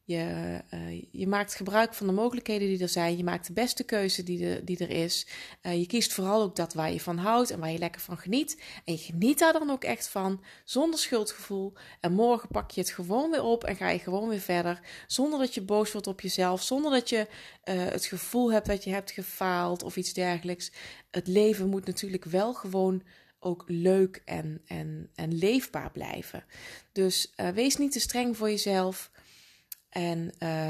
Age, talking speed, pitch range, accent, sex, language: 20-39, 195 wpm, 175-215 Hz, Dutch, female, Dutch